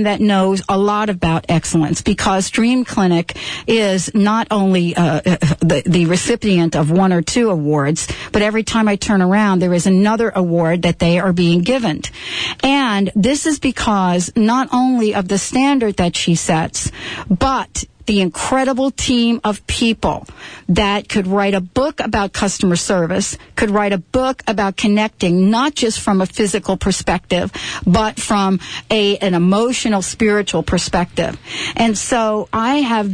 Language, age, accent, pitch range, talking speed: English, 50-69, American, 185-235 Hz, 150 wpm